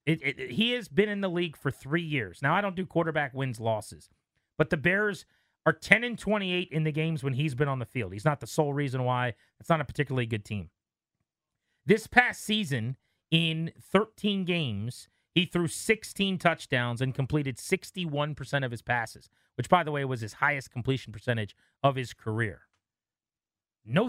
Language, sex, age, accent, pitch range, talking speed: English, male, 30-49, American, 120-185 Hz, 180 wpm